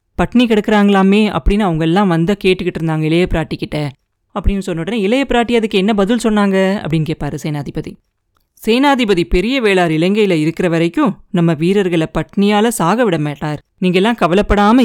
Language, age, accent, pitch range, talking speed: Tamil, 20-39, native, 165-230 Hz, 150 wpm